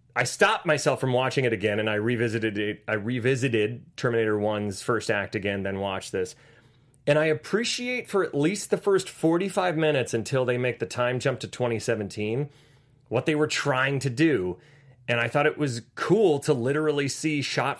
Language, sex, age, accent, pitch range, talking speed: English, male, 30-49, American, 115-155 Hz, 190 wpm